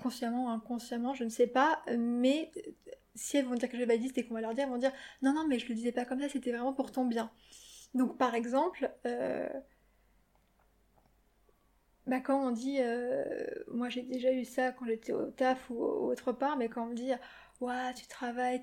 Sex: female